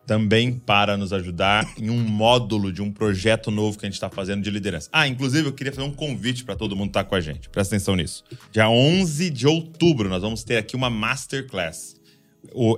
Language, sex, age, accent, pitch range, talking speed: Portuguese, male, 20-39, Brazilian, 110-135 Hz, 220 wpm